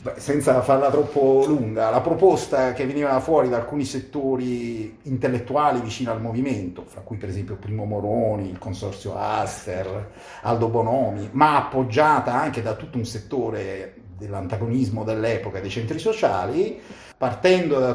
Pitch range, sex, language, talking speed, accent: 115-140 Hz, male, Italian, 135 wpm, native